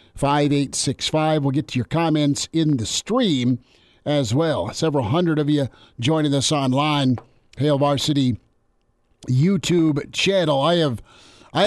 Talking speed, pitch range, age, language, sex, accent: 130 wpm, 130-155 Hz, 50-69, English, male, American